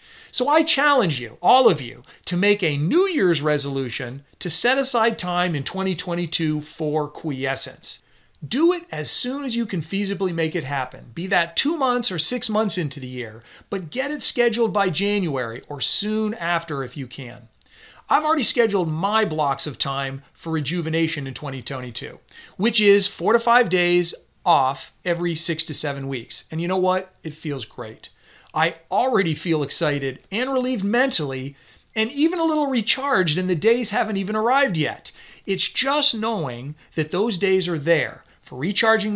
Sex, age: male, 40-59